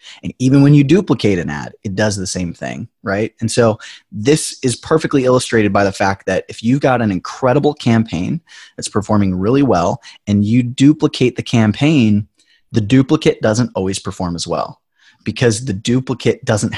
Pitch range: 100-125 Hz